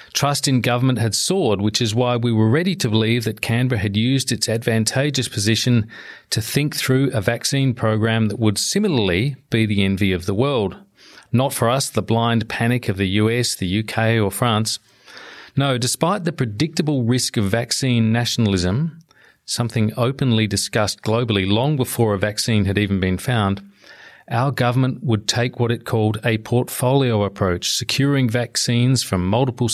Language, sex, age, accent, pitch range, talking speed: English, male, 40-59, Australian, 110-130 Hz, 165 wpm